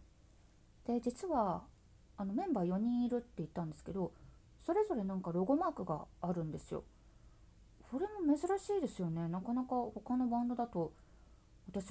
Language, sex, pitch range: Japanese, female, 175-245 Hz